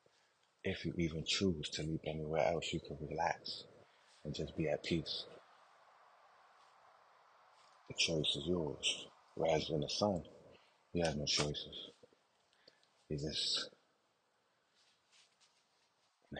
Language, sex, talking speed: English, male, 115 wpm